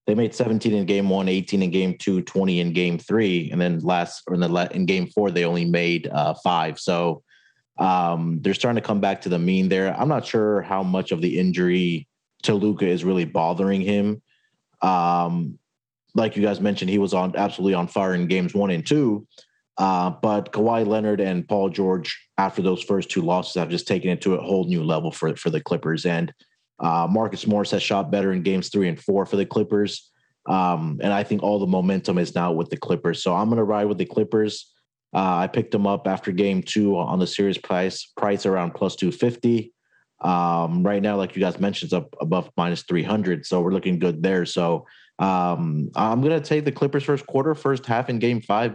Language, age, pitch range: English, 30-49, 90-105 Hz